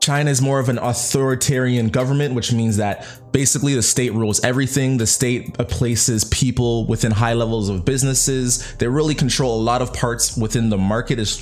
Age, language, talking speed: 20-39, English, 185 wpm